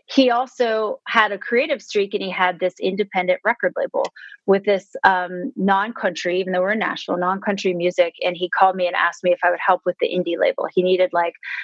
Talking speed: 210 wpm